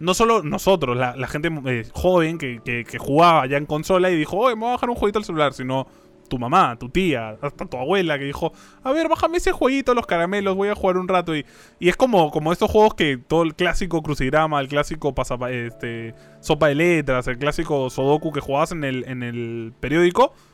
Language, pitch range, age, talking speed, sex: Spanish, 130-185 Hz, 20-39, 225 wpm, male